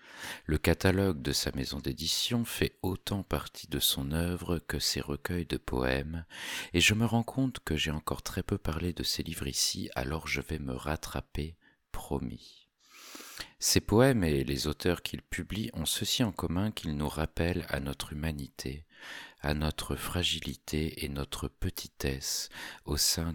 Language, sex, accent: French, male, French